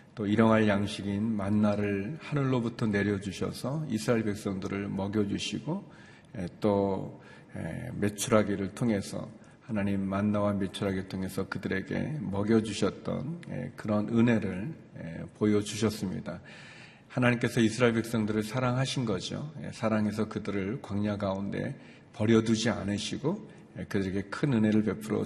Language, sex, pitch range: Korean, male, 100-115 Hz